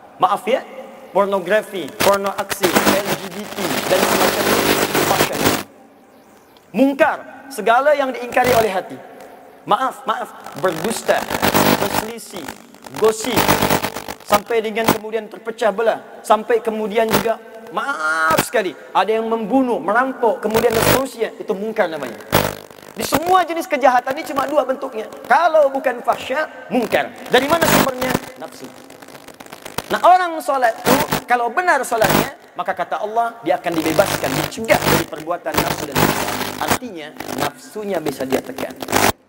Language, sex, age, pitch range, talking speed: Indonesian, male, 30-49, 190-265 Hz, 120 wpm